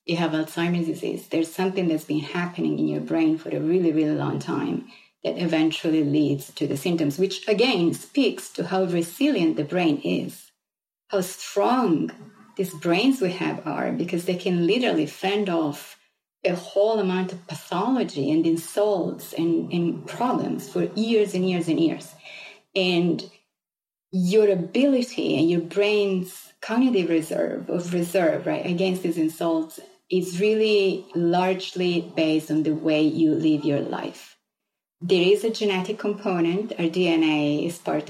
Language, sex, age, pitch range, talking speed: English, female, 30-49, 155-195 Hz, 150 wpm